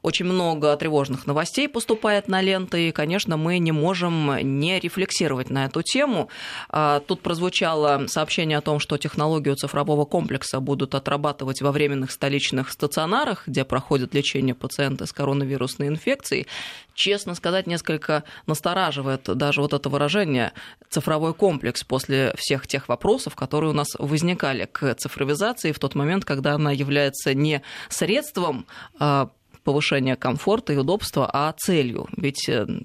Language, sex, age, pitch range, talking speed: Russian, female, 20-39, 140-165 Hz, 135 wpm